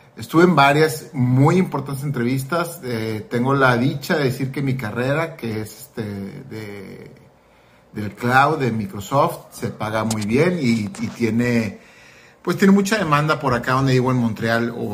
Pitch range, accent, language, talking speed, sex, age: 115-145 Hz, Mexican, Spanish, 165 wpm, male, 40-59